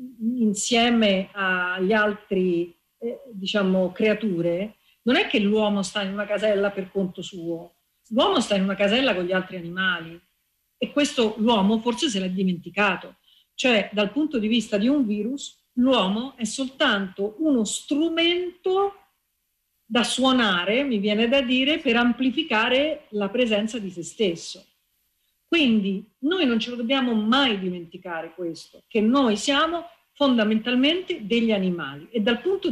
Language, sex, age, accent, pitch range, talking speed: Italian, female, 50-69, native, 200-260 Hz, 140 wpm